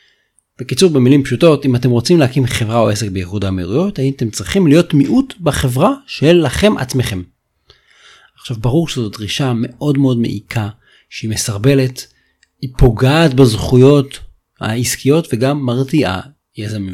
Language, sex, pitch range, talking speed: Hebrew, male, 110-145 Hz, 130 wpm